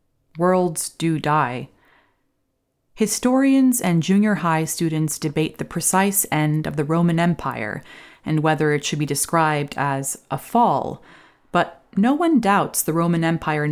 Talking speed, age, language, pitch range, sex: 140 wpm, 30-49, English, 150-180 Hz, female